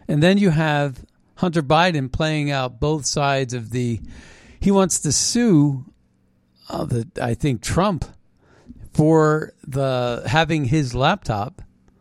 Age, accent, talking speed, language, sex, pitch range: 50-69, American, 135 wpm, English, male, 125-175 Hz